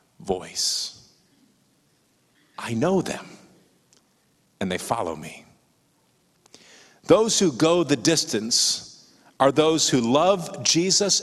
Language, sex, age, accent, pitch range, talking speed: English, male, 50-69, American, 130-175 Hz, 95 wpm